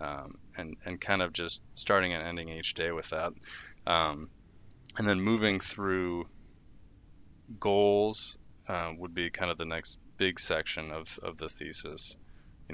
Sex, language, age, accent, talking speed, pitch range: male, English, 20-39, American, 155 wpm, 85-95 Hz